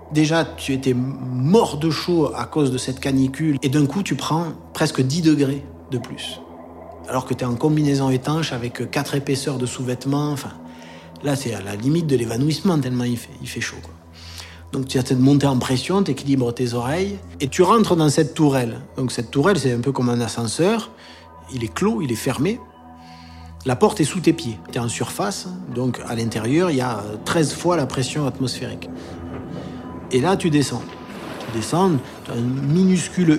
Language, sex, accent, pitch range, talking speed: French, male, French, 115-150 Hz, 200 wpm